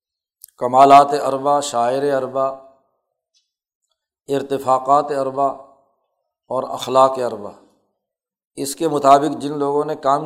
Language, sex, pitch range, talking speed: Urdu, male, 130-150 Hz, 95 wpm